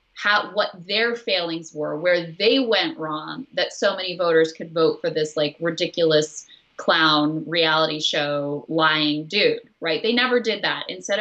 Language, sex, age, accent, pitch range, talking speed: English, female, 20-39, American, 160-205 Hz, 160 wpm